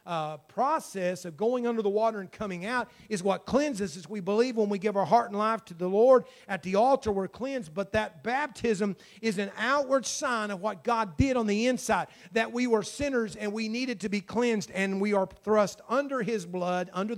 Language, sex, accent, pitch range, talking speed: English, male, American, 195-250 Hz, 220 wpm